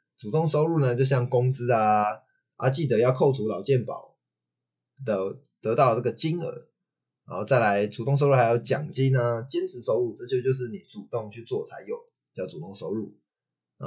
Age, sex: 20-39, male